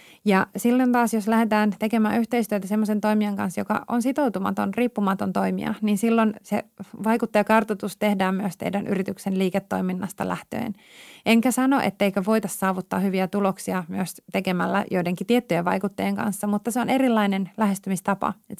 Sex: female